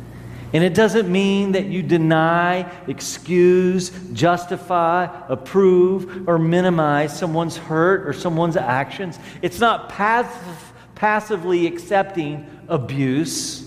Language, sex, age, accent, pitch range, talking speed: English, male, 40-59, American, 150-190 Hz, 95 wpm